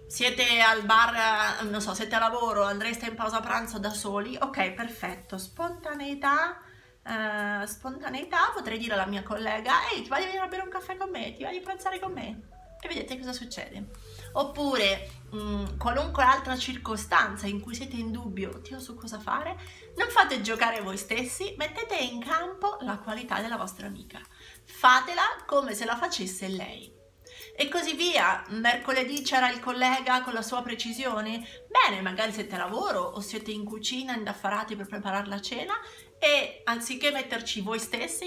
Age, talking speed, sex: 30-49, 170 wpm, female